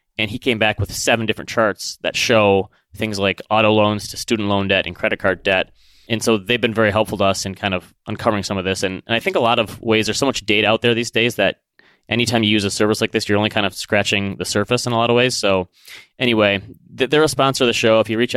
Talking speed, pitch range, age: 275 wpm, 100-120 Hz, 20-39